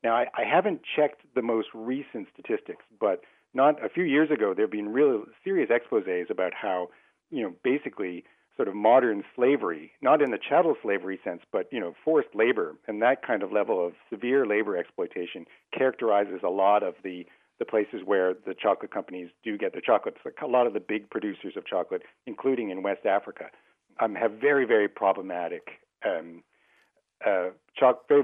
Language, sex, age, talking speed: English, male, 50-69, 185 wpm